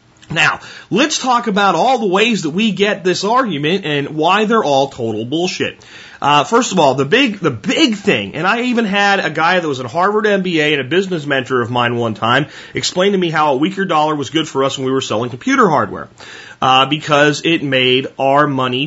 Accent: American